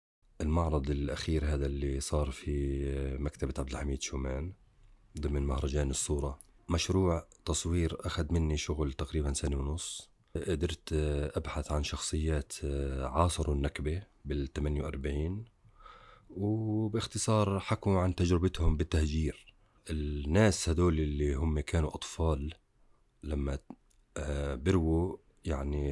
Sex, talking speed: male, 100 wpm